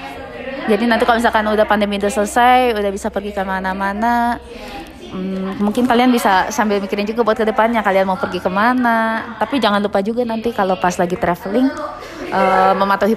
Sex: female